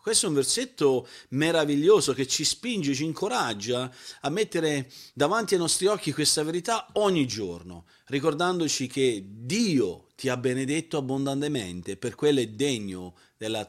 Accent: native